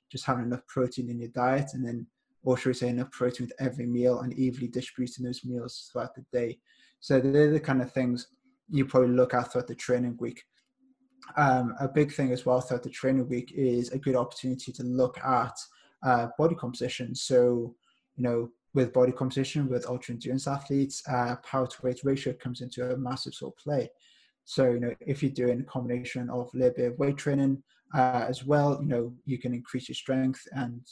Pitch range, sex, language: 125-135 Hz, male, English